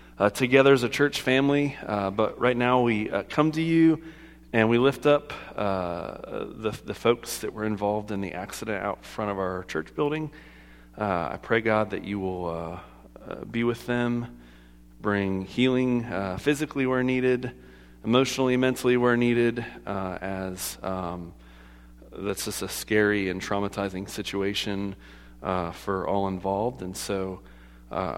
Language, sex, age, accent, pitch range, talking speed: English, male, 40-59, American, 70-115 Hz, 160 wpm